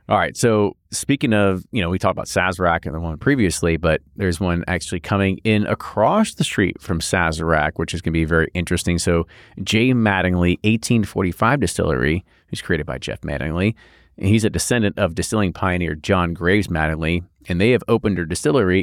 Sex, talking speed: male, 190 wpm